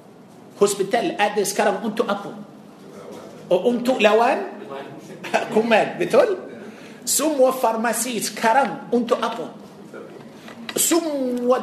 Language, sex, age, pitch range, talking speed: Malay, male, 50-69, 215-255 Hz, 85 wpm